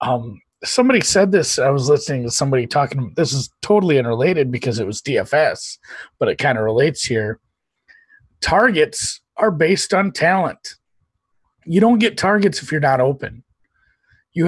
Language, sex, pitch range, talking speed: English, male, 125-190 Hz, 160 wpm